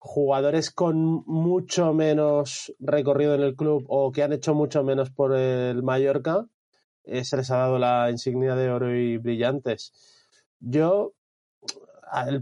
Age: 30-49